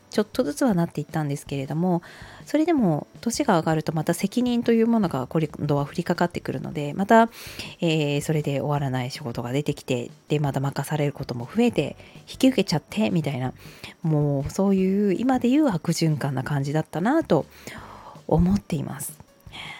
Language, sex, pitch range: Japanese, female, 150-225 Hz